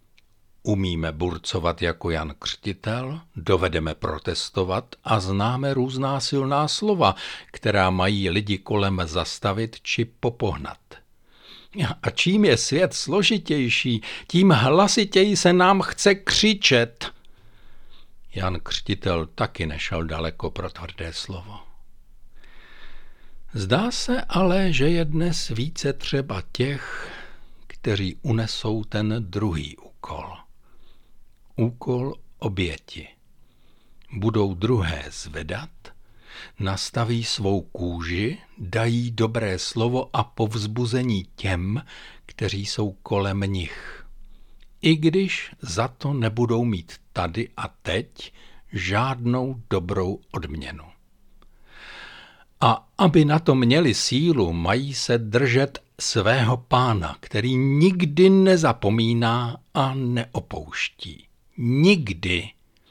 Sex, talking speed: male, 95 wpm